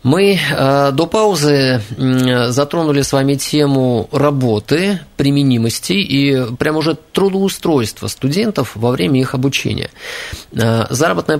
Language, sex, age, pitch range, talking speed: Russian, male, 20-39, 120-150 Hz, 100 wpm